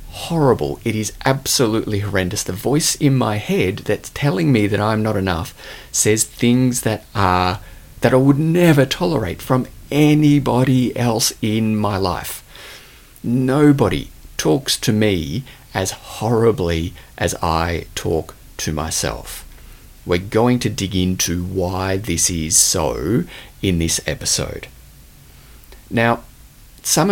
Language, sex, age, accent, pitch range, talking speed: English, male, 30-49, Australian, 90-125 Hz, 125 wpm